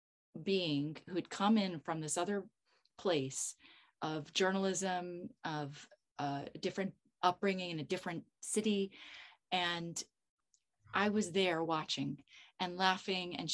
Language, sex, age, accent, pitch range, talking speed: English, female, 30-49, American, 170-215 Hz, 120 wpm